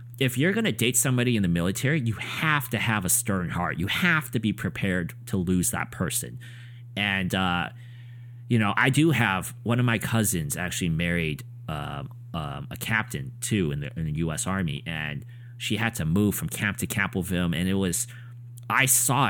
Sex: male